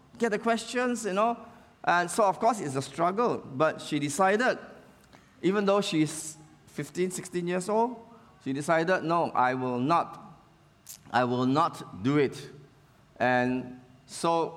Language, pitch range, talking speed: English, 140-215 Hz, 145 wpm